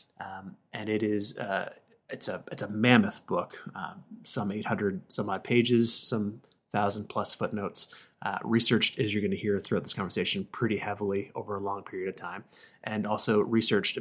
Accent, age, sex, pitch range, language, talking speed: American, 30-49, male, 105-125 Hz, English, 180 wpm